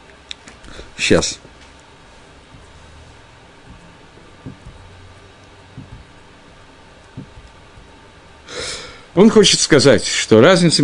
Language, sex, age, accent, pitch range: Russian, male, 50-69, native, 105-145 Hz